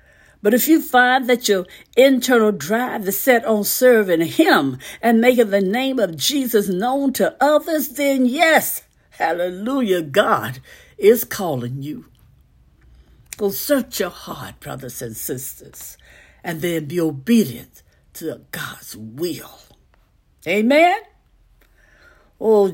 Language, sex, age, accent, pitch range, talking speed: English, female, 60-79, American, 155-250 Hz, 120 wpm